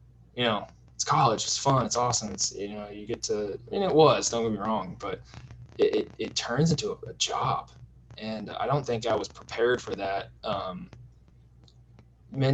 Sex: male